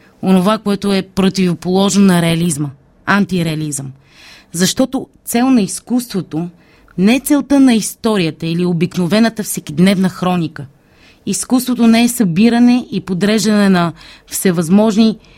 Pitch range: 175-215 Hz